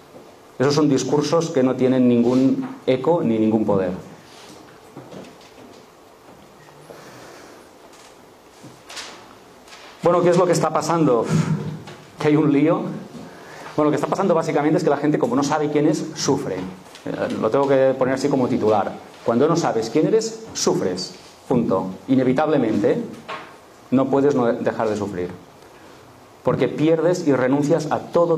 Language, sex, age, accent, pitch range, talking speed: Spanish, male, 40-59, Spanish, 120-160 Hz, 135 wpm